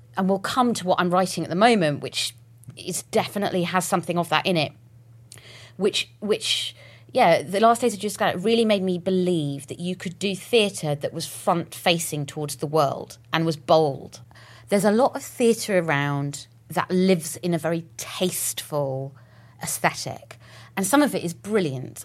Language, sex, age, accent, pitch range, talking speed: English, female, 30-49, British, 135-195 Hz, 180 wpm